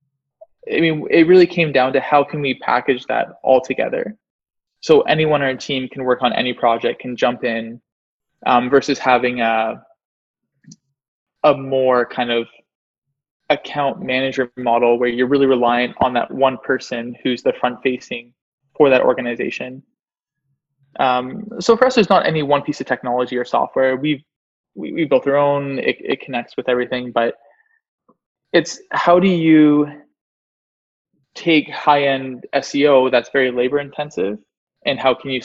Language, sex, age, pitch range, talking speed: English, male, 20-39, 125-150 Hz, 155 wpm